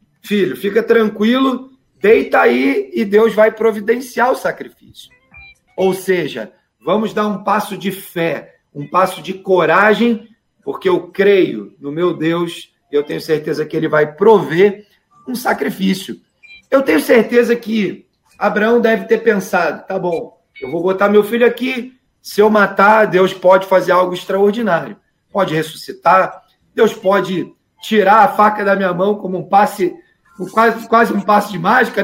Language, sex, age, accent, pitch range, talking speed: Portuguese, male, 40-59, Brazilian, 175-220 Hz, 150 wpm